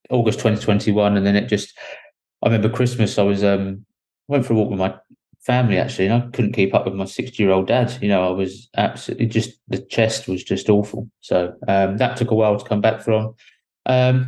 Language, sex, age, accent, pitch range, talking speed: English, male, 20-39, British, 100-115 Hz, 225 wpm